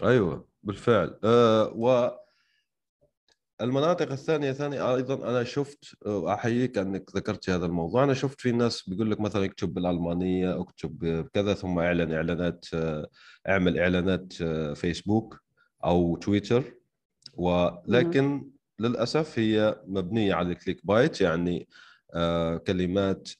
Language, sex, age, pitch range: Arabic, male, 30-49, 90-125 Hz